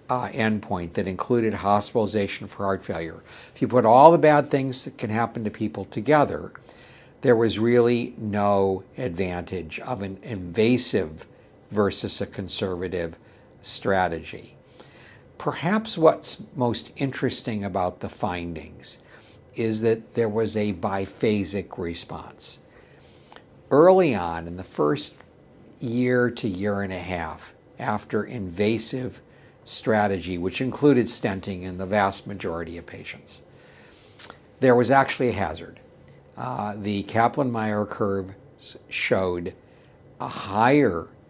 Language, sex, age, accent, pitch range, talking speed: English, male, 60-79, American, 95-120 Hz, 120 wpm